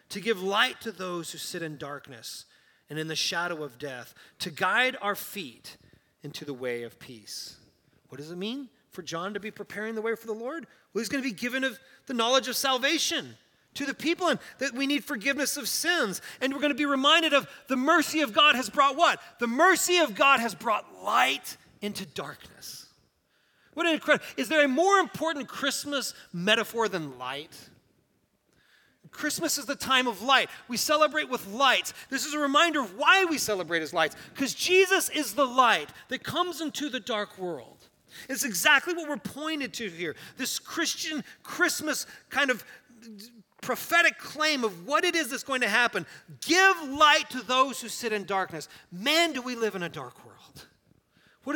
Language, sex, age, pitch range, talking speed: English, male, 30-49, 185-295 Hz, 190 wpm